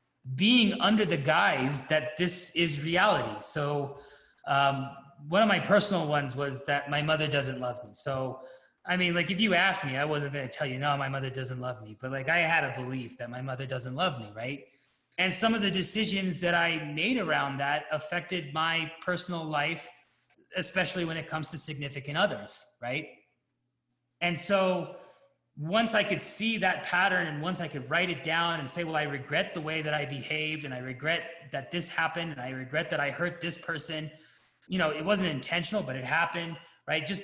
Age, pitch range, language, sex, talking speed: 30-49, 140-185 Hz, English, male, 205 wpm